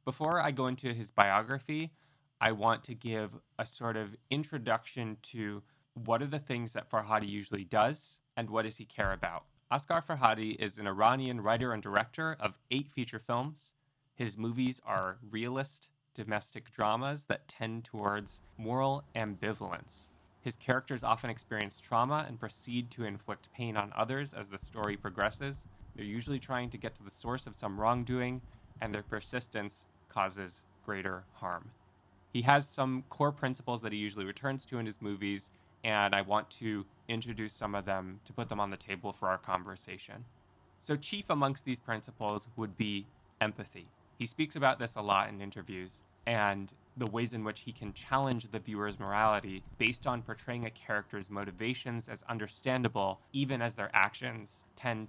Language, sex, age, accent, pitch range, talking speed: English, male, 20-39, American, 100-125 Hz, 170 wpm